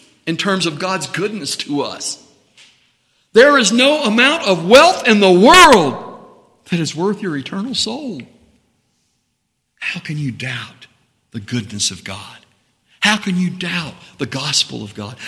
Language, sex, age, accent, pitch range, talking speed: English, male, 60-79, American, 110-165 Hz, 150 wpm